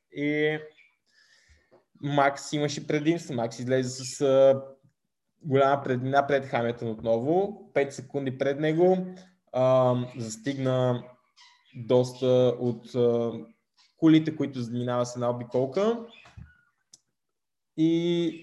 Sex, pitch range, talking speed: male, 125-150 Hz, 85 wpm